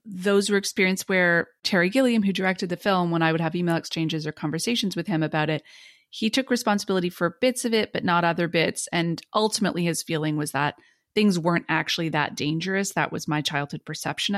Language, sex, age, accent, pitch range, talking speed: English, female, 30-49, American, 160-210 Hz, 205 wpm